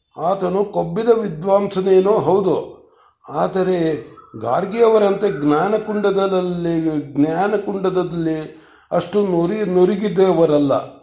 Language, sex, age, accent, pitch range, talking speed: Kannada, male, 60-79, native, 160-195 Hz, 60 wpm